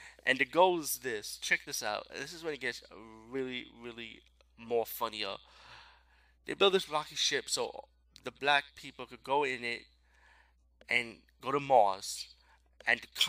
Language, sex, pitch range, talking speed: English, male, 105-135 Hz, 160 wpm